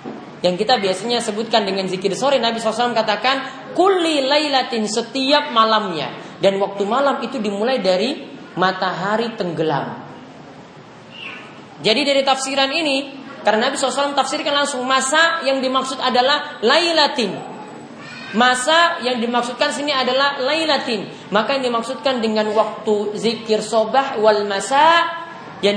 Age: 30-49